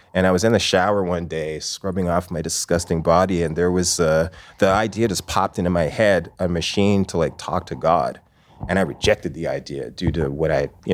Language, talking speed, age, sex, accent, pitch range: English, 220 wpm, 30-49, male, American, 80-100 Hz